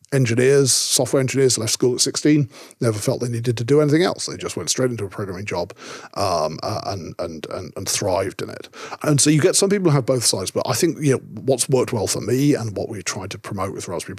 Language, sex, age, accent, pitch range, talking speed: English, male, 40-59, British, 110-140 Hz, 255 wpm